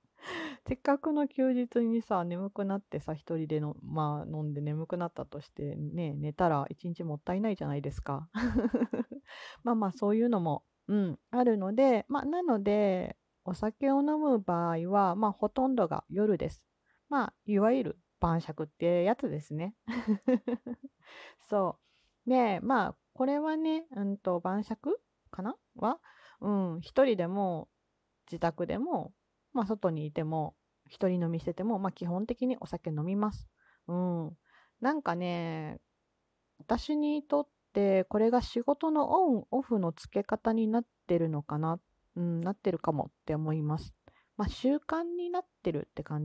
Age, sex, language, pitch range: 40-59, female, Japanese, 170-245 Hz